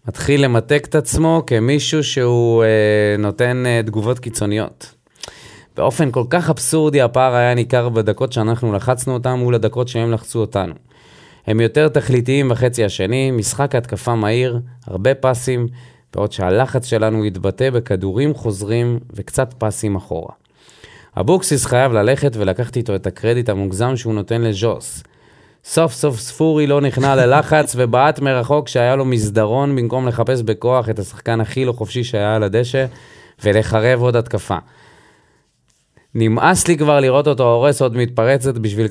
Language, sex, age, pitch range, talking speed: Hebrew, male, 30-49, 110-130 Hz, 140 wpm